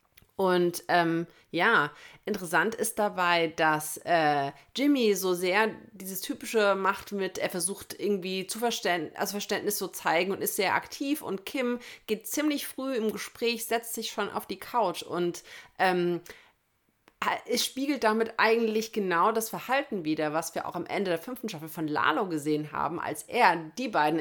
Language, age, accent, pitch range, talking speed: English, 30-49, German, 170-220 Hz, 170 wpm